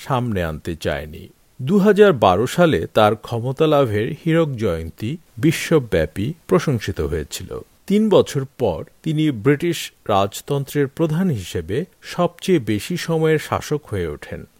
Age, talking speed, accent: 50-69, 105 wpm, native